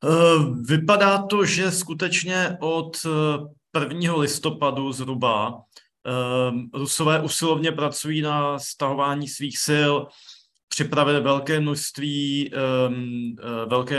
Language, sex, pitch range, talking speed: Slovak, male, 130-145 Hz, 80 wpm